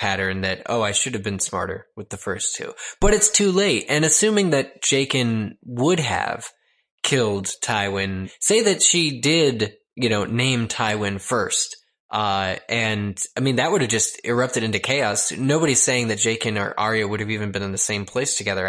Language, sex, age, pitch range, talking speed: English, male, 20-39, 100-125 Hz, 190 wpm